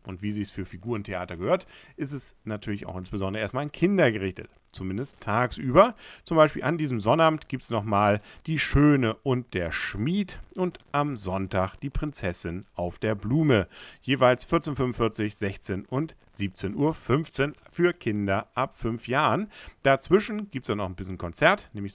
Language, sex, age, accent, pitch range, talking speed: German, male, 50-69, German, 95-140 Hz, 165 wpm